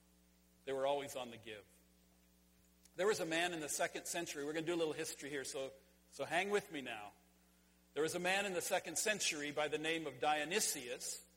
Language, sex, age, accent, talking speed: English, male, 50-69, American, 215 wpm